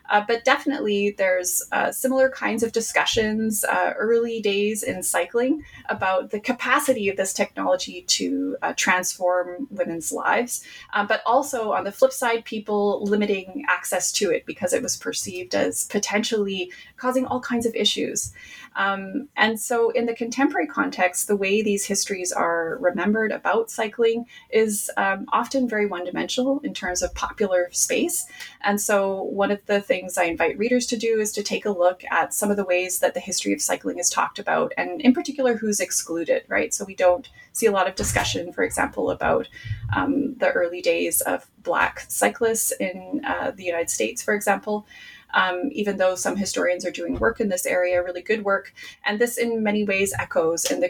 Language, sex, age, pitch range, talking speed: English, female, 20-39, 185-255 Hz, 185 wpm